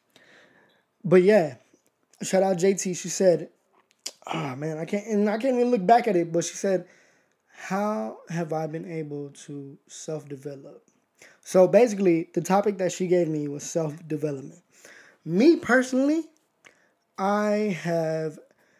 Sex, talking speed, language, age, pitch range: male, 130 wpm, English, 20-39, 160-225 Hz